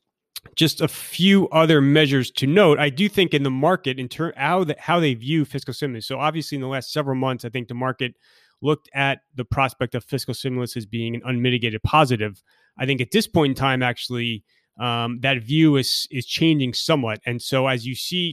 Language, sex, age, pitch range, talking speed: English, male, 30-49, 120-145 Hz, 215 wpm